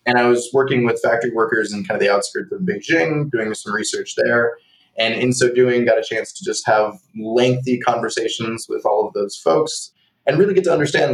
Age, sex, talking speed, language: 20-39, male, 215 wpm, English